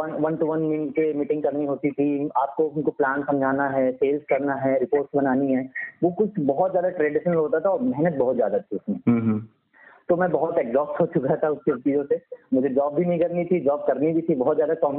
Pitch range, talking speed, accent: 140-180 Hz, 215 wpm, native